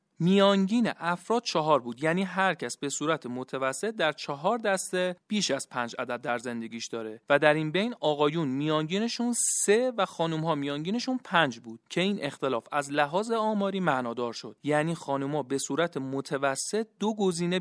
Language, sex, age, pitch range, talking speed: Persian, male, 40-59, 135-180 Hz, 165 wpm